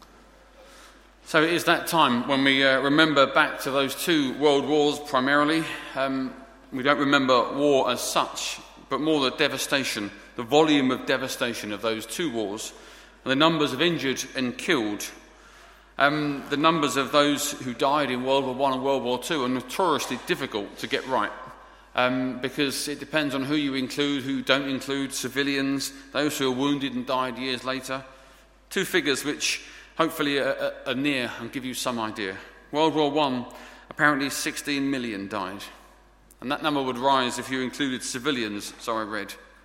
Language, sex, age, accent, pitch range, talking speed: English, male, 30-49, British, 125-145 Hz, 175 wpm